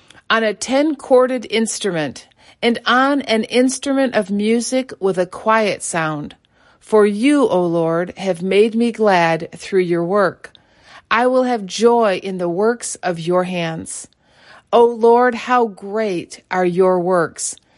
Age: 40-59